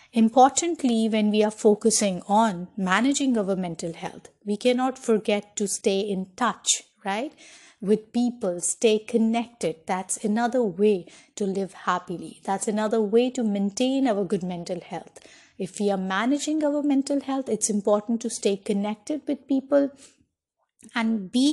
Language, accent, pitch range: English, Indian, 190-235 Hz